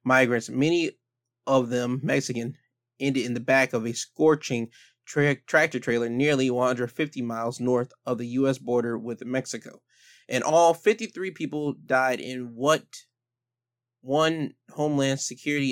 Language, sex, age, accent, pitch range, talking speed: English, male, 20-39, American, 120-140 Hz, 130 wpm